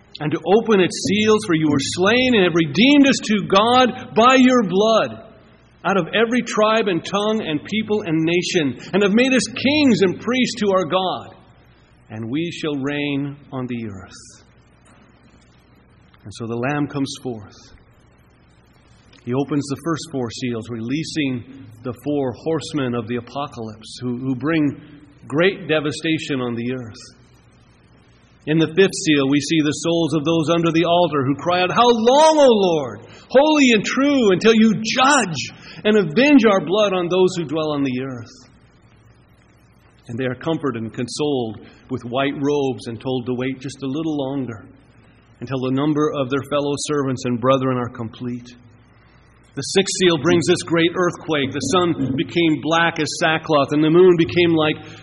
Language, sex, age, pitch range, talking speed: English, male, 40-59, 130-185 Hz, 170 wpm